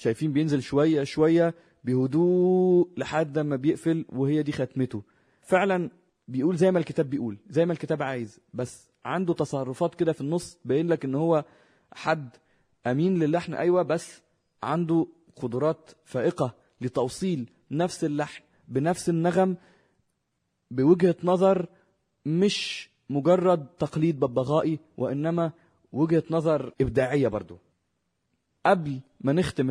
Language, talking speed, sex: Arabic, 115 wpm, male